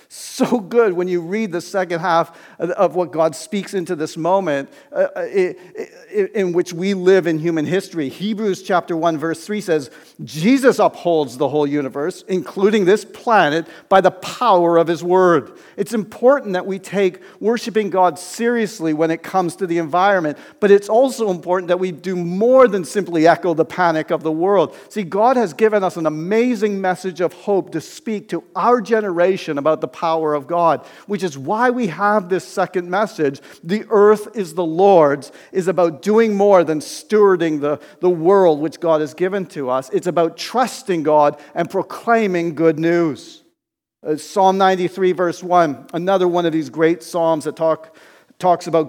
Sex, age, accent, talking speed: male, 50-69, American, 175 wpm